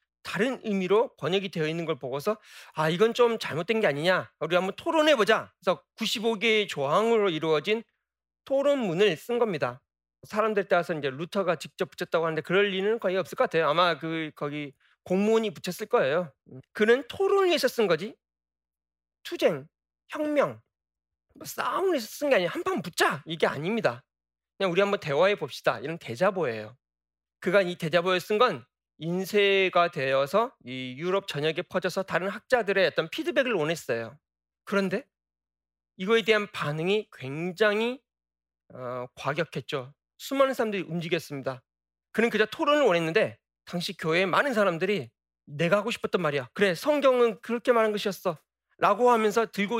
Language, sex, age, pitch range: Korean, male, 40-59, 150-220 Hz